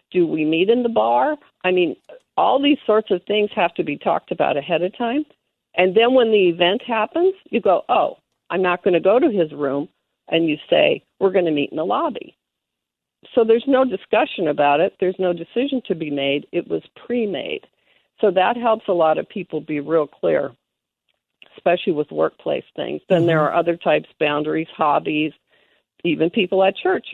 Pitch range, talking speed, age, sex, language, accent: 170-245 Hz, 195 wpm, 50-69, female, English, American